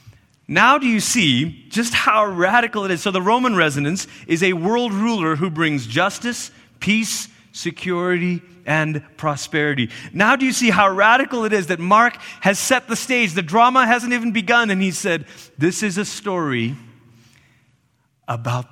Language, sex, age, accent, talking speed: English, male, 30-49, American, 165 wpm